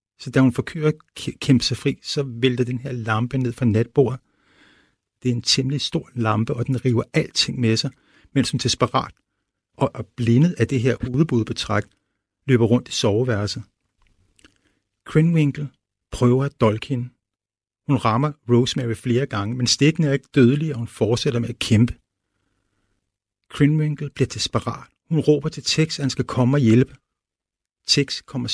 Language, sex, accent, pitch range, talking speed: Danish, male, native, 110-135 Hz, 165 wpm